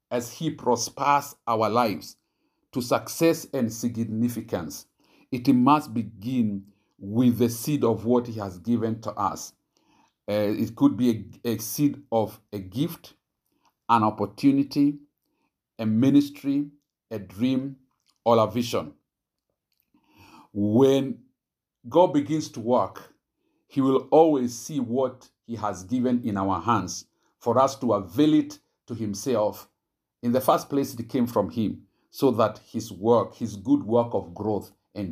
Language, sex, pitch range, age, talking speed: English, male, 110-135 Hz, 50-69, 140 wpm